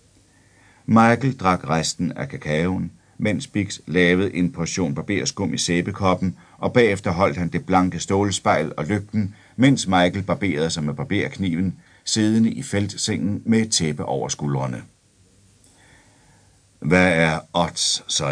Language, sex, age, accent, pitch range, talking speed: Danish, male, 60-79, native, 85-100 Hz, 130 wpm